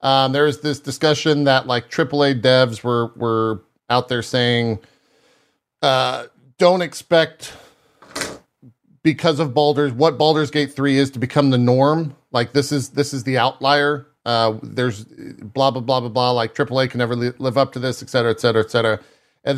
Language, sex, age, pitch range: English, male, 40-59, 115-145 Hz